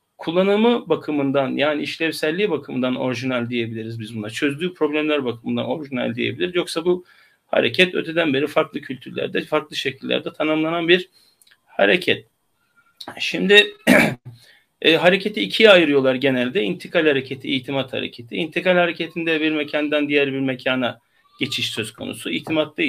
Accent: native